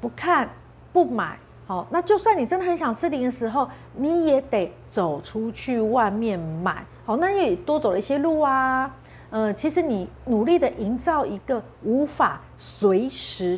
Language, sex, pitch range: Chinese, female, 185-270 Hz